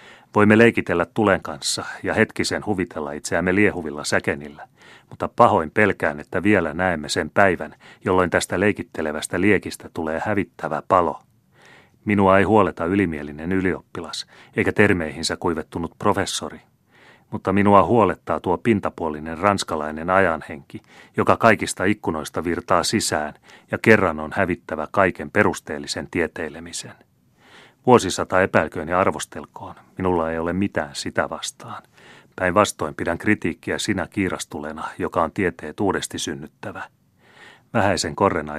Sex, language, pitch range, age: male, Finnish, 80-100 Hz, 30-49